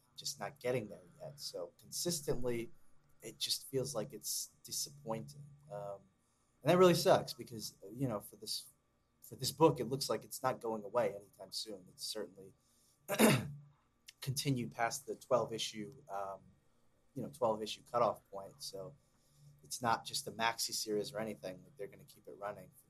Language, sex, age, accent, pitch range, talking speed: English, male, 20-39, American, 105-145 Hz, 170 wpm